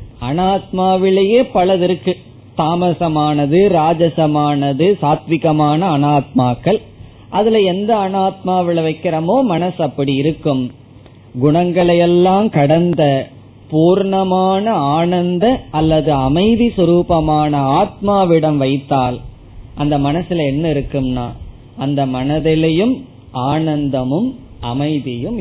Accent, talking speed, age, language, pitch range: native, 70 wpm, 20-39, Tamil, 135-180 Hz